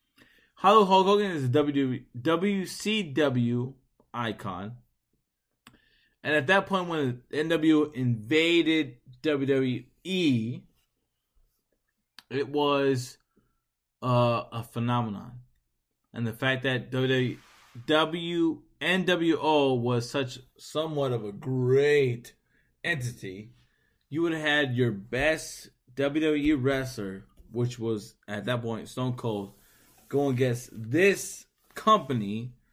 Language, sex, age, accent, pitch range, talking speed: English, male, 20-39, American, 110-150 Hz, 95 wpm